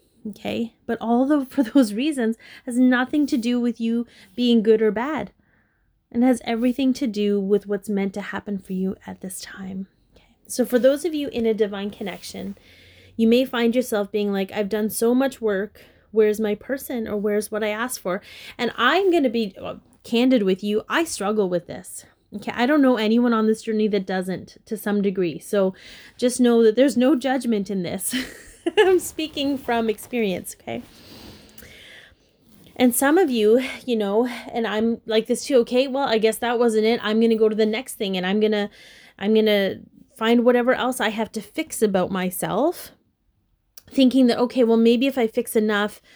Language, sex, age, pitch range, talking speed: English, female, 20-39, 210-250 Hz, 200 wpm